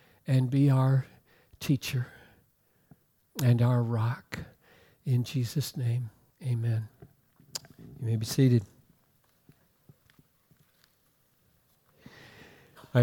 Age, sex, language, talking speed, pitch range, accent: 60-79, male, English, 75 wpm, 115-140 Hz, American